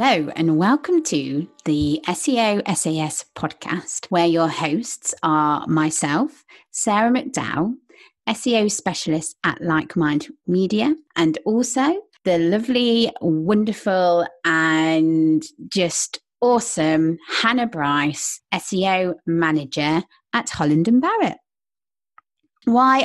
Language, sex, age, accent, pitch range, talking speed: English, female, 30-49, British, 160-230 Hz, 95 wpm